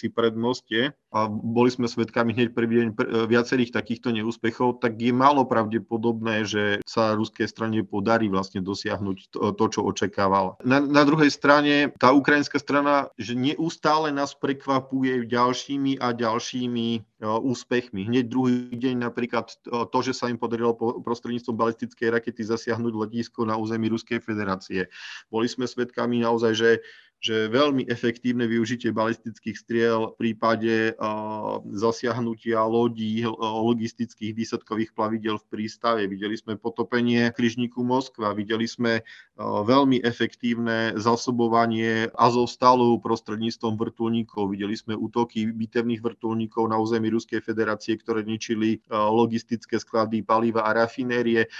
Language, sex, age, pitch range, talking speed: Slovak, male, 40-59, 110-120 Hz, 130 wpm